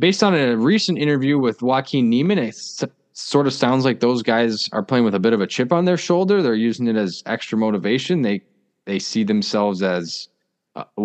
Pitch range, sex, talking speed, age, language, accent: 100-130 Hz, male, 210 wpm, 20-39, English, American